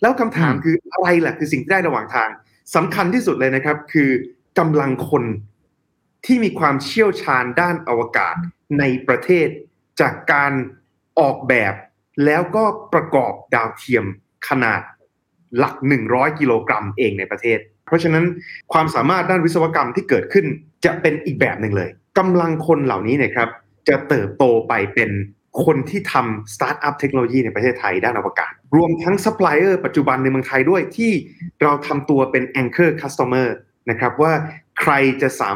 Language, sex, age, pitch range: Thai, male, 20-39, 125-165 Hz